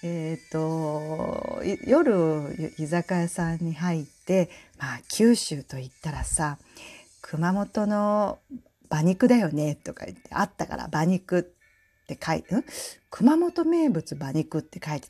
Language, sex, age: Japanese, female, 40-59